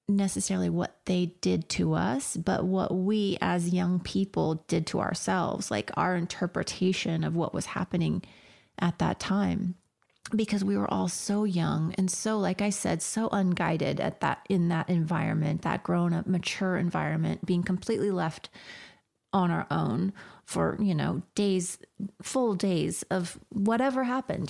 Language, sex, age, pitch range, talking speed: English, female, 30-49, 170-200 Hz, 155 wpm